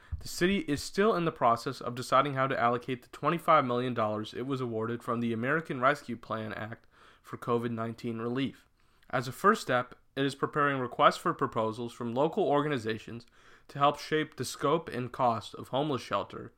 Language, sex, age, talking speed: English, male, 30-49, 175 wpm